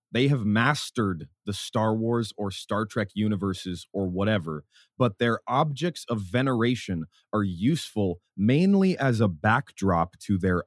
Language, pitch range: English, 95-120 Hz